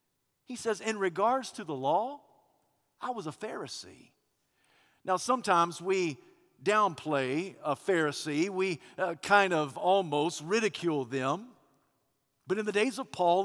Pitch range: 175-240 Hz